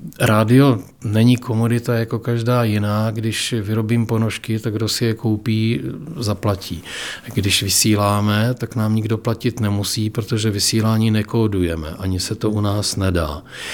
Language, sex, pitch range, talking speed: Czech, male, 100-110 Hz, 135 wpm